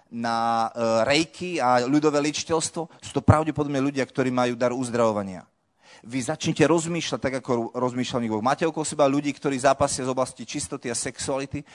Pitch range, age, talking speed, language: 110-135 Hz, 30-49, 160 wpm, Slovak